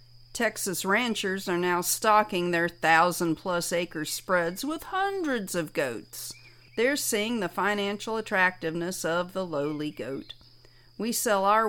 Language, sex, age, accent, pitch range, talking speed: English, female, 50-69, American, 160-220 Hz, 130 wpm